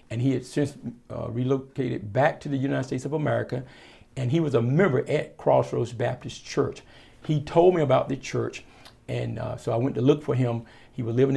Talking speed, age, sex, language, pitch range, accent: 210 wpm, 50-69, male, English, 115-145 Hz, American